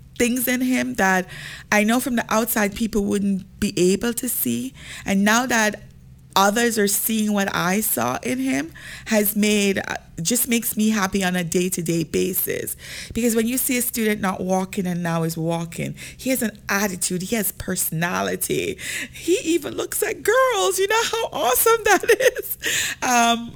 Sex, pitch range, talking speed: female, 175-235 Hz, 170 wpm